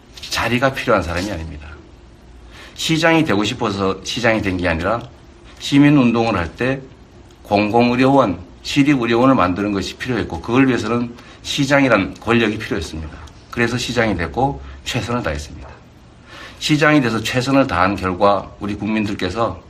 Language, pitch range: Korean, 85-125 Hz